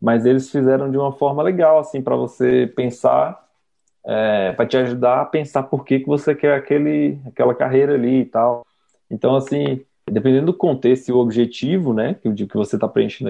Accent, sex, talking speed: Brazilian, male, 185 wpm